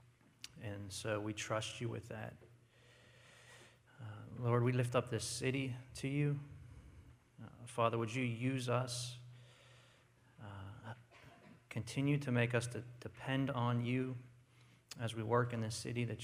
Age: 40-59